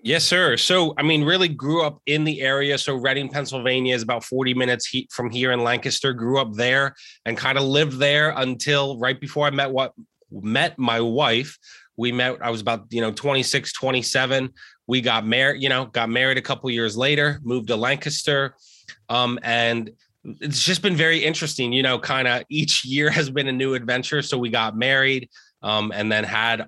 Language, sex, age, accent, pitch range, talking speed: English, male, 20-39, American, 115-140 Hz, 200 wpm